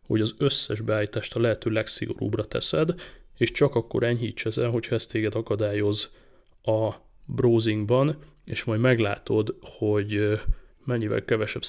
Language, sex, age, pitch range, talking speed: Hungarian, male, 30-49, 110-125 Hz, 130 wpm